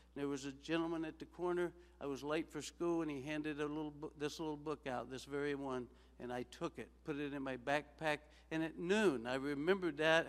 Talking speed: 235 wpm